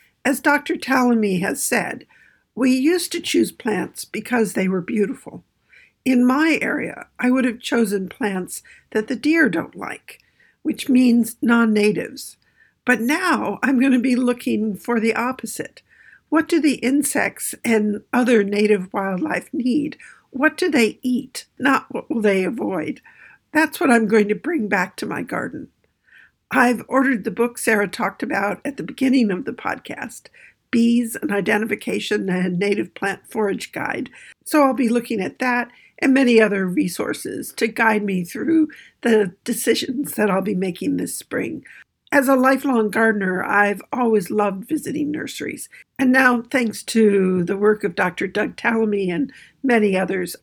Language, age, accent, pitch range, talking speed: English, 60-79, American, 210-265 Hz, 160 wpm